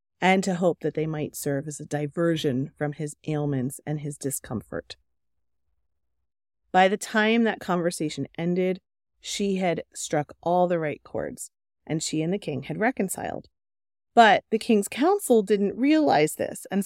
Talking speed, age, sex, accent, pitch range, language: 155 wpm, 30-49, female, American, 140-190 Hz, English